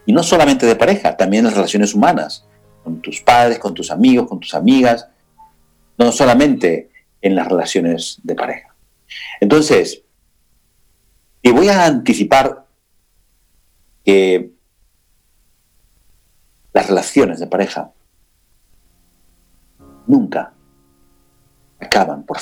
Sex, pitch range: male, 80-130 Hz